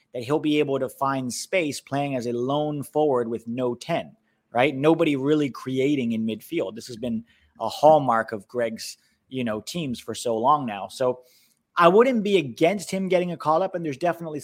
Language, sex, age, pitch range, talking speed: English, male, 30-49, 125-165 Hz, 200 wpm